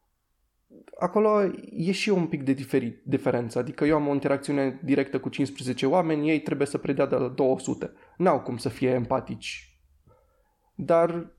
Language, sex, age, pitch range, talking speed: Romanian, male, 20-39, 140-195 Hz, 170 wpm